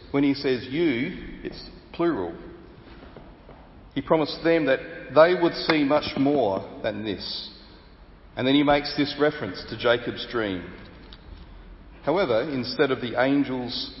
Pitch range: 105-150 Hz